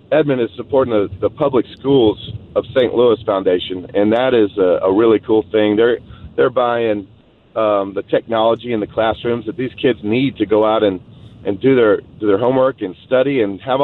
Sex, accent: male, American